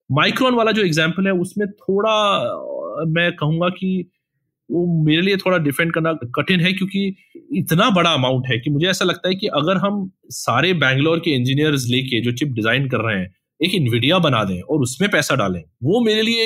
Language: Hindi